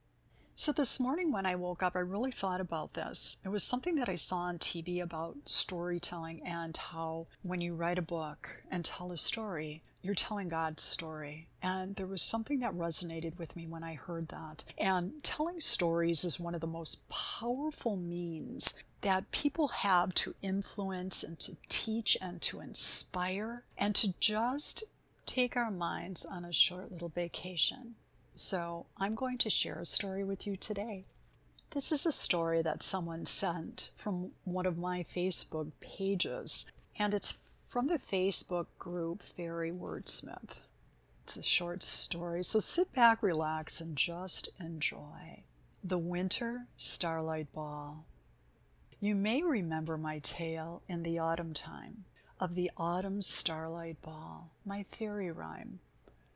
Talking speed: 155 wpm